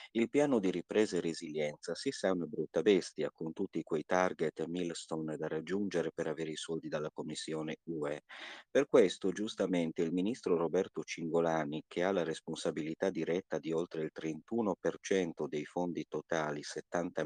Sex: male